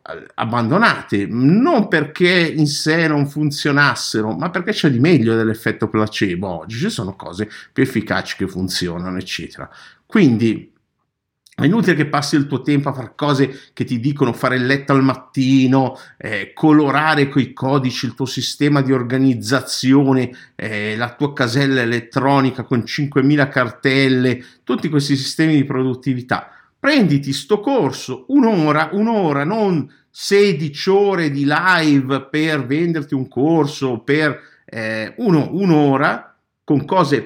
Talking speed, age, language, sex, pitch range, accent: 135 wpm, 50-69, Italian, male, 120-150 Hz, native